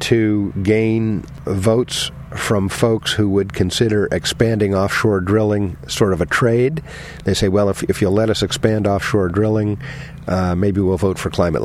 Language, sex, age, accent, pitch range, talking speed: English, male, 50-69, American, 95-115 Hz, 165 wpm